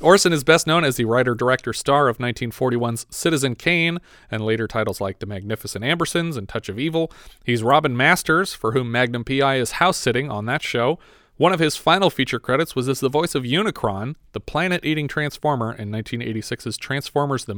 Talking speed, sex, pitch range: 185 wpm, male, 120-160 Hz